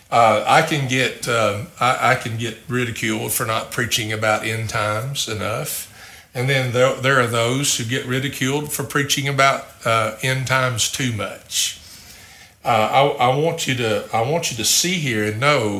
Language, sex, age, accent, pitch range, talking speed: English, male, 50-69, American, 110-140 Hz, 180 wpm